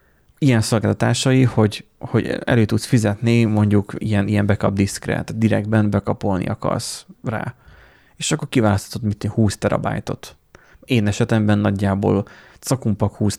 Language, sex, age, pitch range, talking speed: Hungarian, male, 30-49, 100-120 Hz, 120 wpm